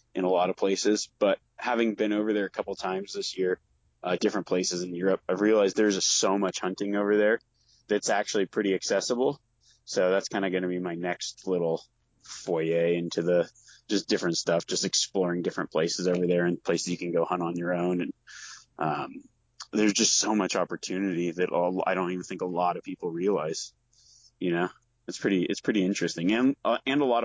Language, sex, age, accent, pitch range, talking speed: English, male, 20-39, American, 90-105 Hz, 205 wpm